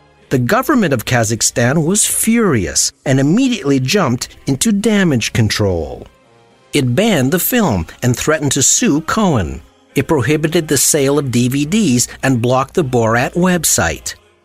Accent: American